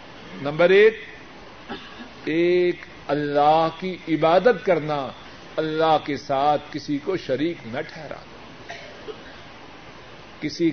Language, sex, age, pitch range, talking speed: Urdu, male, 50-69, 155-210 Hz, 90 wpm